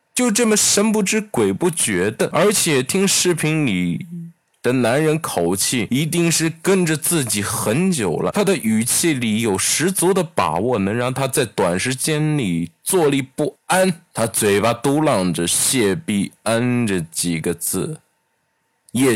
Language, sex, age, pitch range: Chinese, male, 20-39, 100-150 Hz